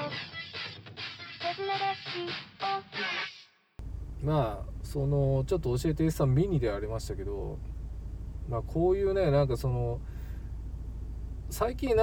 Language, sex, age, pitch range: Japanese, male, 20-39, 80-95 Hz